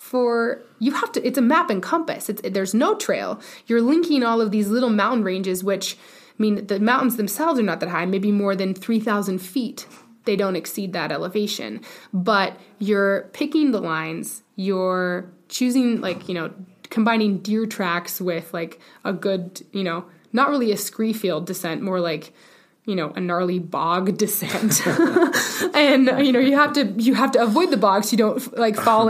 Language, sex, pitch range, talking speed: English, female, 185-245 Hz, 185 wpm